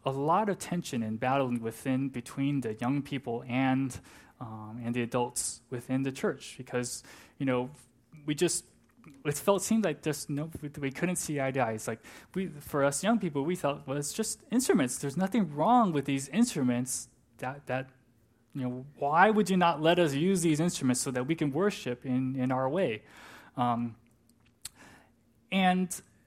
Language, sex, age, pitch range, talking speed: English, male, 20-39, 120-150 Hz, 185 wpm